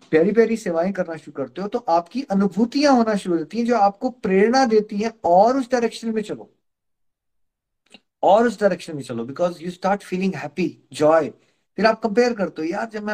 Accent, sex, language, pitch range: native, male, Hindi, 145-215 Hz